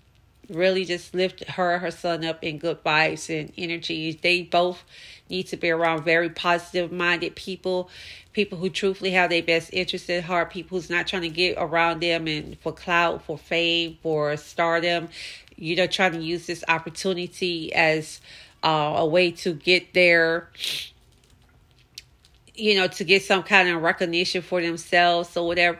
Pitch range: 165-180 Hz